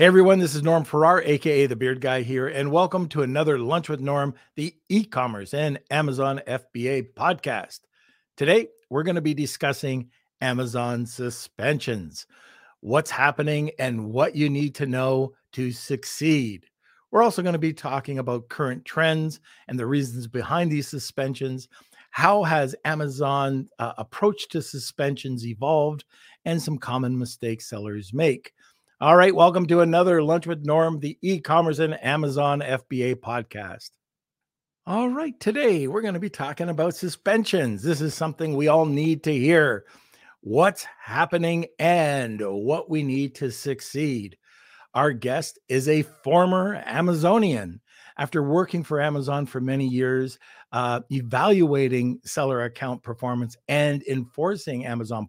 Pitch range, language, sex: 130-160 Hz, English, male